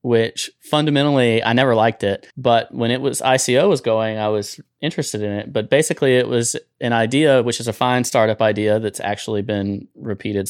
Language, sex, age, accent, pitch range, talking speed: English, male, 30-49, American, 105-125 Hz, 195 wpm